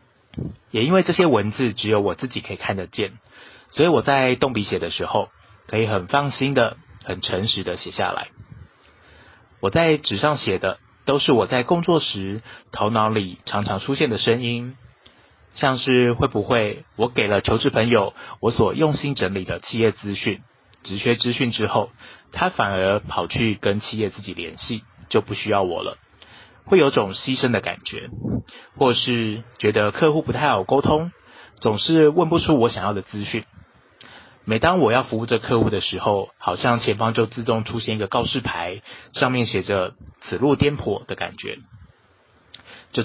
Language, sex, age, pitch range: Chinese, male, 30-49, 100-135 Hz